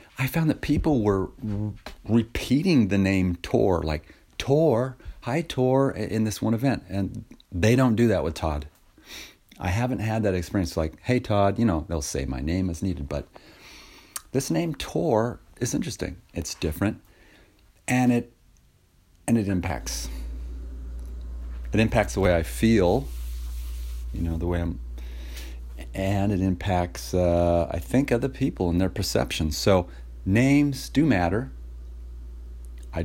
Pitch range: 70-110 Hz